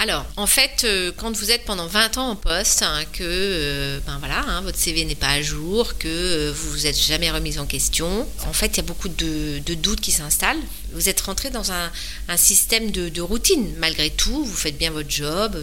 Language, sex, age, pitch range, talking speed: French, female, 40-59, 160-220 Hz, 240 wpm